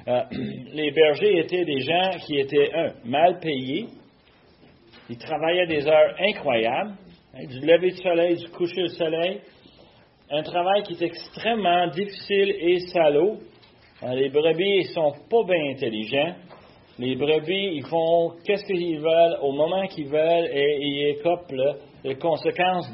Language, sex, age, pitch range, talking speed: French, male, 40-59, 140-190 Hz, 155 wpm